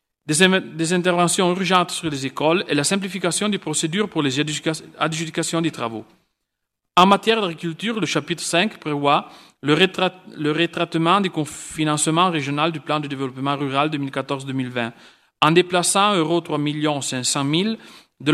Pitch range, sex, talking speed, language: 145-180 Hz, male, 130 wpm, Italian